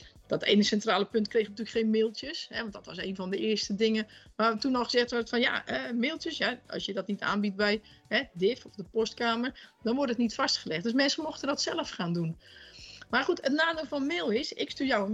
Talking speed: 240 wpm